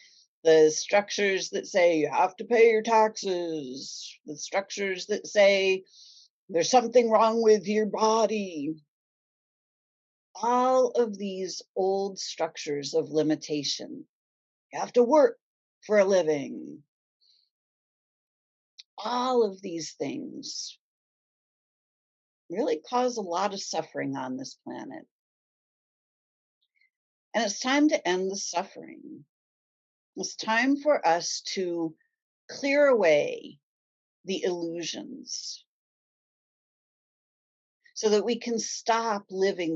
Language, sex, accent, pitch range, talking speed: English, female, American, 165-255 Hz, 105 wpm